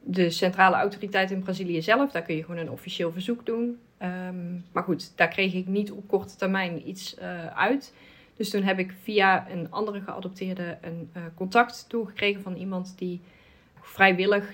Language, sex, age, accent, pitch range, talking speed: Dutch, female, 30-49, Dutch, 180-205 Hz, 180 wpm